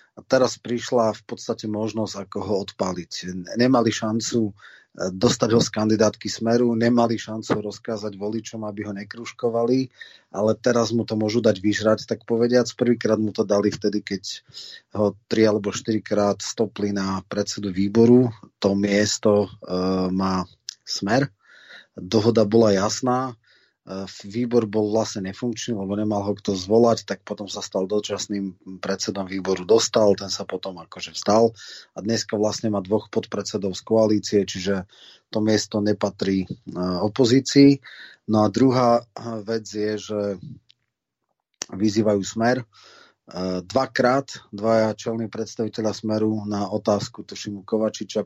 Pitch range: 100-115 Hz